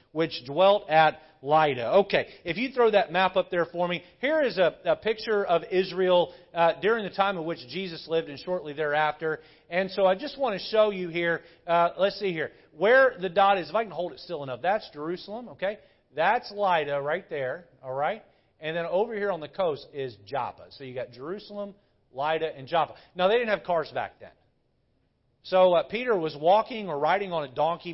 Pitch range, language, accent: 145-195 Hz, English, American